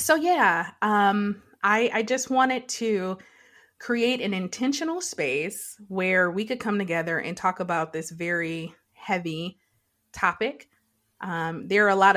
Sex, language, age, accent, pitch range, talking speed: female, English, 20-39, American, 165-205 Hz, 145 wpm